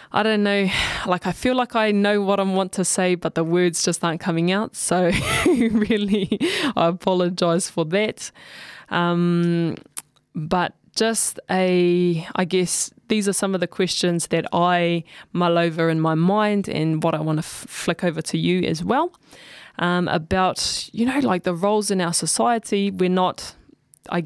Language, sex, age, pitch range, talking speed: English, female, 20-39, 170-205 Hz, 175 wpm